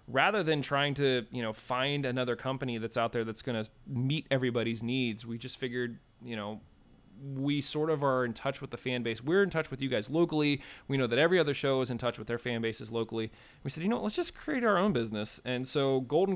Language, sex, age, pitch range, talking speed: English, male, 30-49, 120-140 Hz, 245 wpm